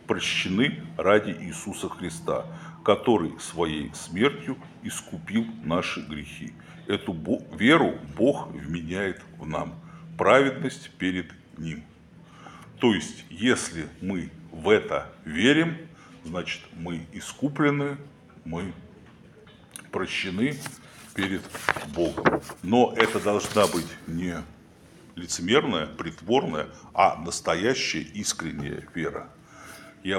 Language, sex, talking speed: Russian, male, 90 wpm